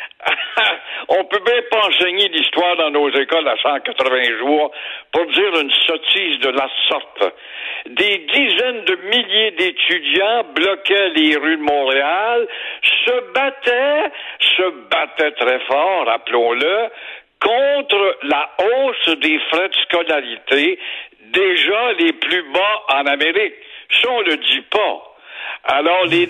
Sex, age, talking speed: male, 60-79, 130 wpm